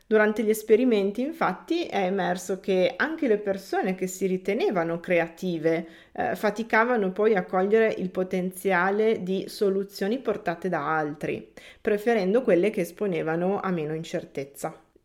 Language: Italian